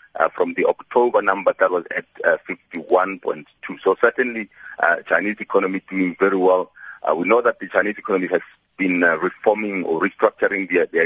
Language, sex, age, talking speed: English, male, 40-59, 175 wpm